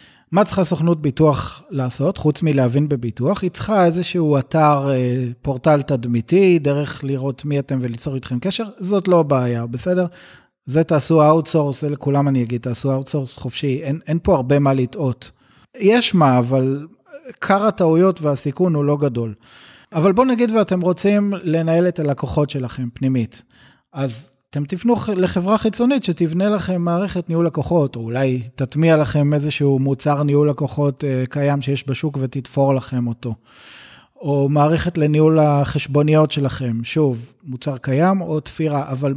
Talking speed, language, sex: 145 wpm, Hebrew, male